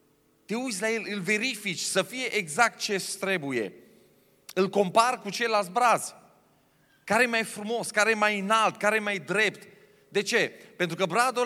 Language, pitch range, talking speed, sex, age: Romanian, 180-225 Hz, 155 wpm, male, 30-49